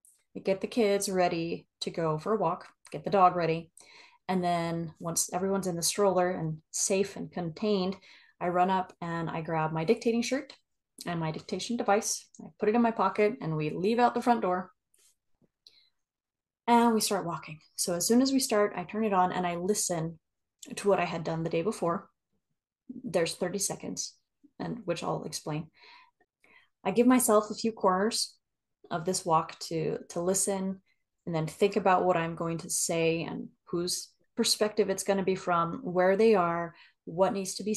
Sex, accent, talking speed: female, American, 185 wpm